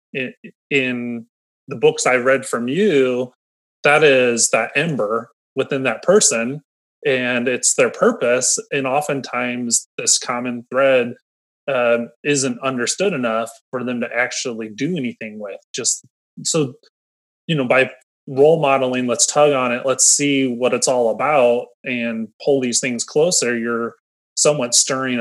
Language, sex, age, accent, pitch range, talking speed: English, male, 30-49, American, 115-135 Hz, 145 wpm